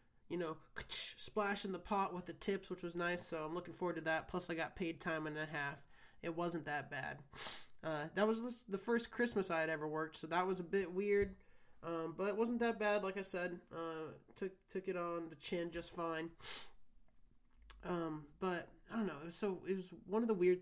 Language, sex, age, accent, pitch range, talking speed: English, male, 30-49, American, 165-205 Hz, 220 wpm